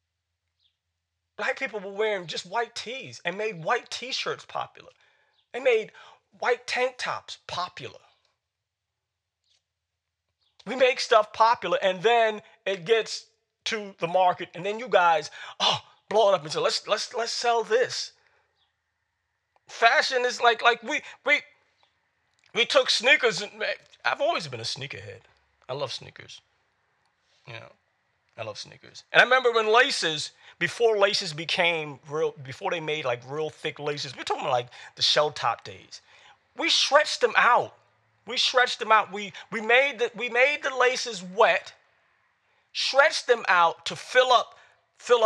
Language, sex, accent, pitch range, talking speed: English, male, American, 165-250 Hz, 150 wpm